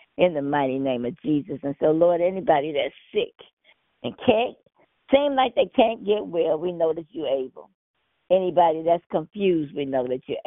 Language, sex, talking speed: English, female, 185 wpm